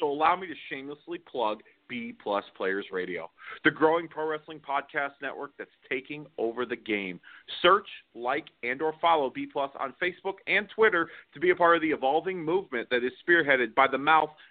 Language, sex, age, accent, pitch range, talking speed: English, male, 40-59, American, 130-170 Hz, 190 wpm